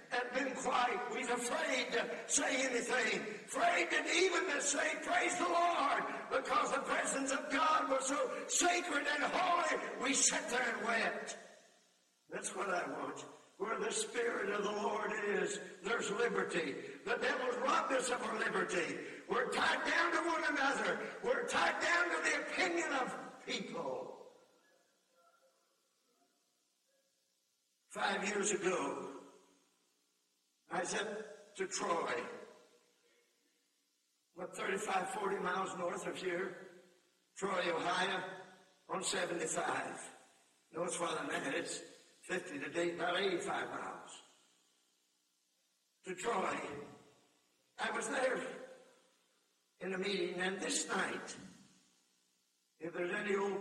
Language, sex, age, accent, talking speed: English, male, 60-79, American, 120 wpm